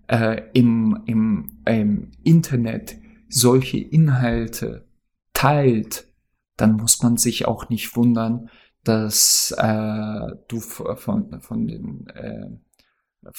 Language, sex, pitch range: German, male, 115-130 Hz